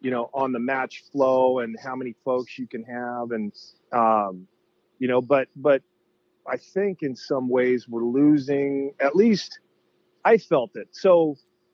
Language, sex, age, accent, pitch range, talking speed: English, male, 30-49, American, 115-150 Hz, 170 wpm